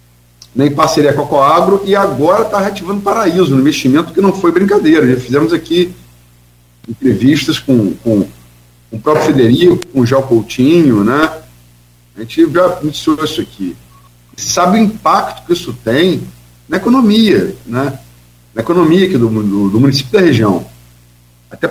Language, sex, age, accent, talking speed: Portuguese, male, 50-69, Brazilian, 160 wpm